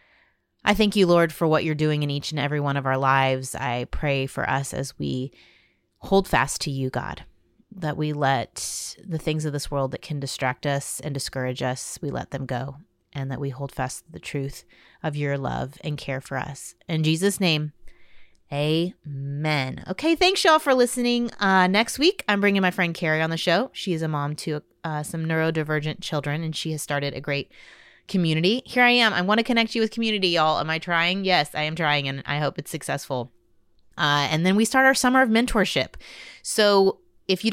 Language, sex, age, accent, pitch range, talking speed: English, female, 30-49, American, 140-185 Hz, 210 wpm